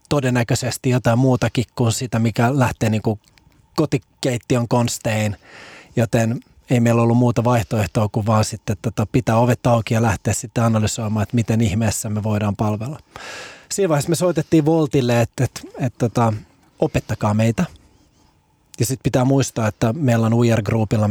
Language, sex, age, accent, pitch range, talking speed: Finnish, male, 20-39, native, 110-125 Hz, 150 wpm